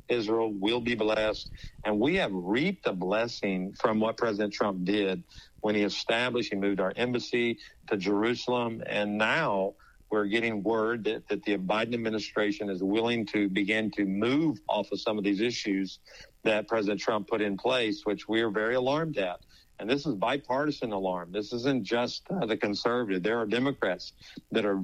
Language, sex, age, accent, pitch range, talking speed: English, male, 50-69, American, 105-120 Hz, 180 wpm